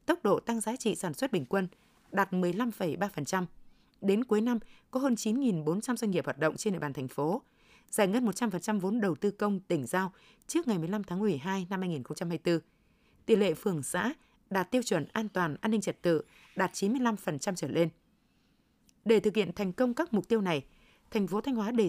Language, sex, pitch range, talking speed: Vietnamese, female, 175-230 Hz, 200 wpm